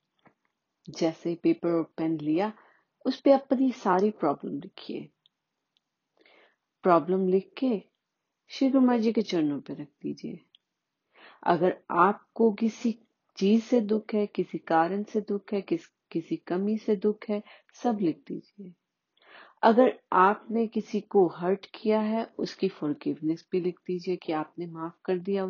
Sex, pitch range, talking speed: female, 175-235 Hz, 110 wpm